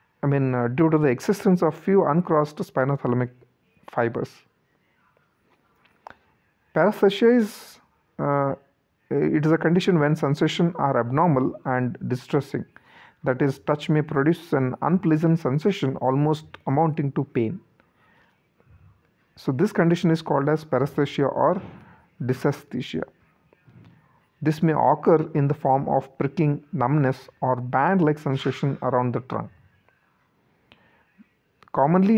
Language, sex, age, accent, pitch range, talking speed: English, male, 40-59, Indian, 130-160 Hz, 115 wpm